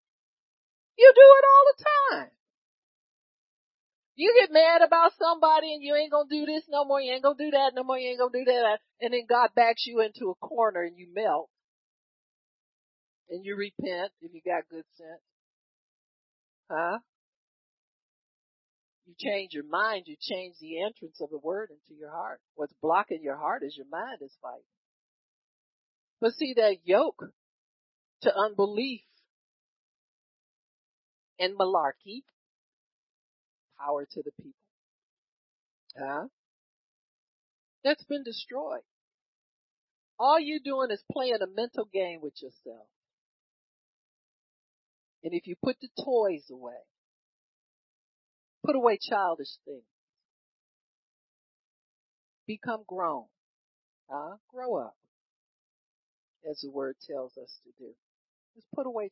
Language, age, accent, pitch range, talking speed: English, 50-69, American, 185-280 Hz, 130 wpm